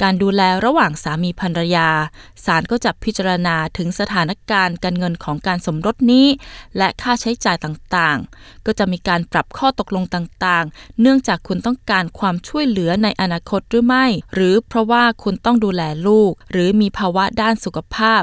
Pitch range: 175-230 Hz